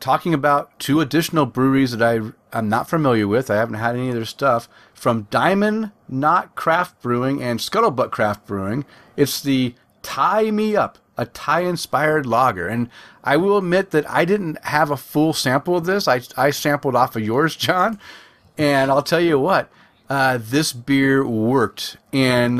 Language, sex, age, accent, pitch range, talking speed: English, male, 40-59, American, 120-160 Hz, 175 wpm